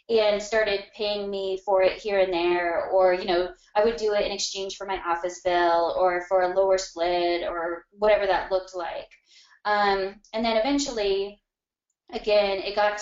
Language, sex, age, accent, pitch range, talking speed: English, female, 20-39, American, 190-225 Hz, 185 wpm